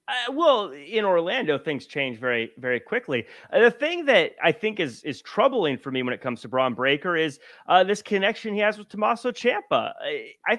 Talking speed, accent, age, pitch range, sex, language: 210 wpm, American, 30-49, 160-240 Hz, male, English